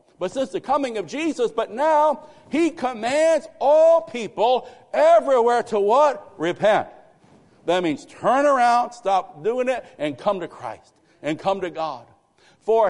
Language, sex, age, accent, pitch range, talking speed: English, male, 60-79, American, 200-280 Hz, 150 wpm